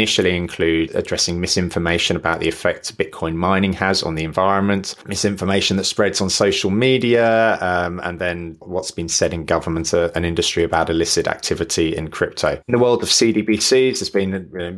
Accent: British